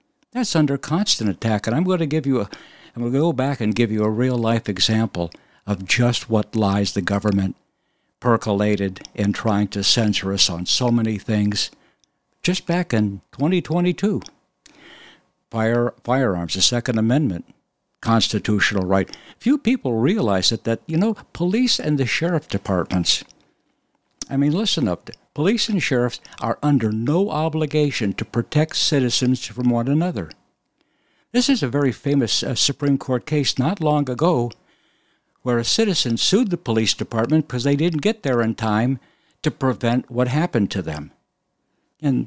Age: 60-79